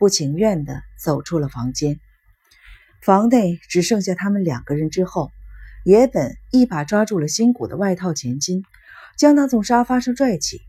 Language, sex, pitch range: Chinese, female, 150-220 Hz